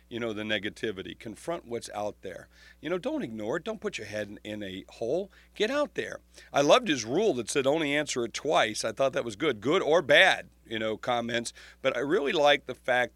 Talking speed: 235 wpm